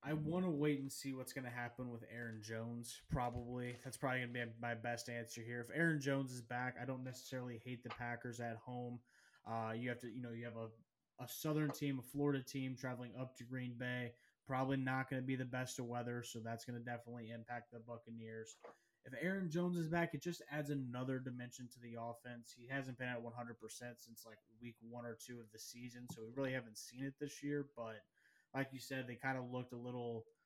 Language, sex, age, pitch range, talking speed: English, male, 20-39, 120-135 Hz, 230 wpm